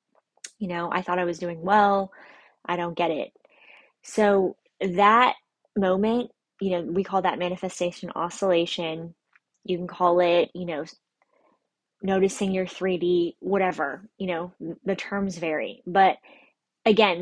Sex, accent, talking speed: female, American, 135 wpm